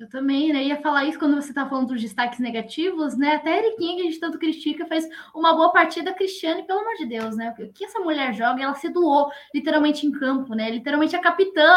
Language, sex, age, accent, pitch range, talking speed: Portuguese, female, 10-29, Brazilian, 260-325 Hz, 245 wpm